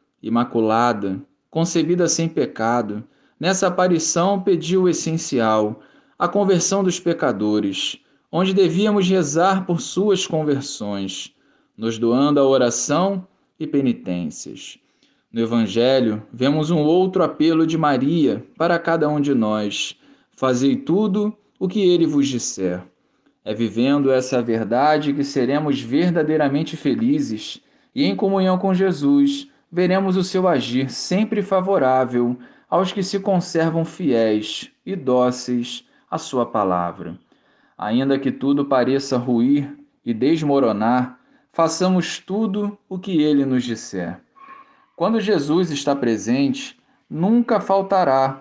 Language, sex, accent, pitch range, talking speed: Portuguese, male, Brazilian, 125-190 Hz, 115 wpm